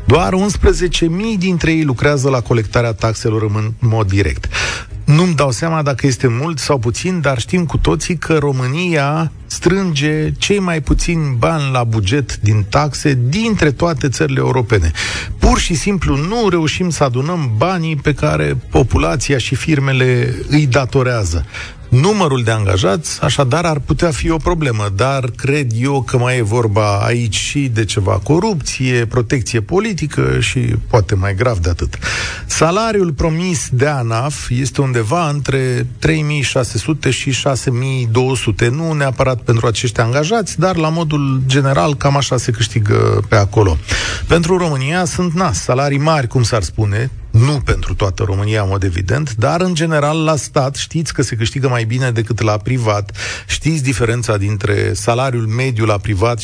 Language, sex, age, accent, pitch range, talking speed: Romanian, male, 40-59, native, 110-150 Hz, 155 wpm